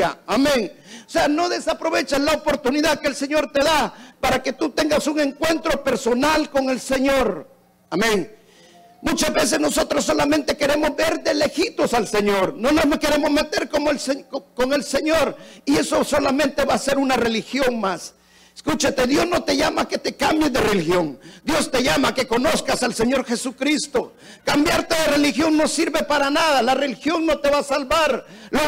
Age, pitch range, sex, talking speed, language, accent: 50-69, 255-310 Hz, male, 180 wpm, Spanish, Mexican